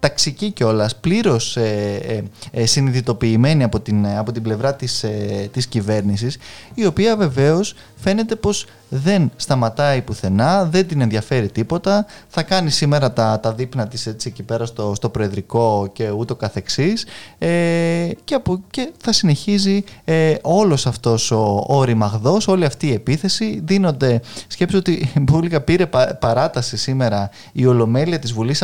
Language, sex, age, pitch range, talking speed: Greek, male, 20-39, 115-170 Hz, 145 wpm